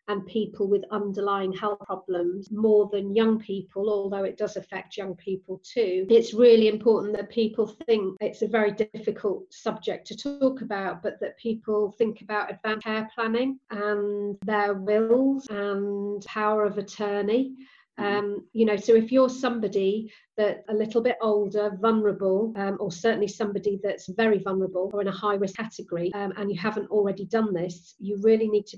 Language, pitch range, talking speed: English, 195-215 Hz, 175 wpm